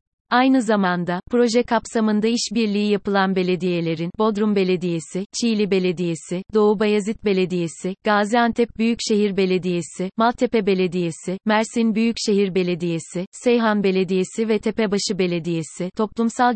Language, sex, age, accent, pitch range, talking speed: Turkish, female, 30-49, native, 190-215 Hz, 100 wpm